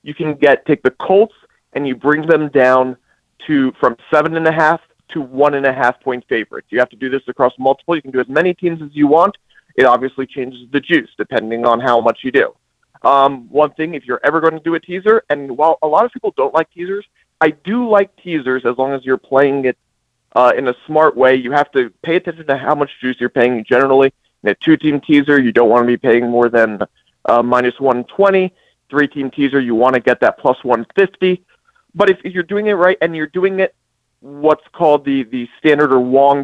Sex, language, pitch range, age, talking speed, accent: male, English, 130-165 Hz, 30-49, 220 wpm, American